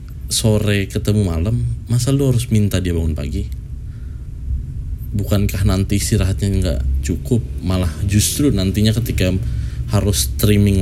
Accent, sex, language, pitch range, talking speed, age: native, male, Indonesian, 85-110 Hz, 115 wpm, 20-39